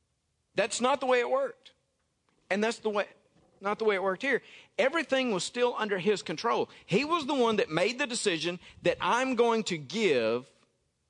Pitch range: 130-215 Hz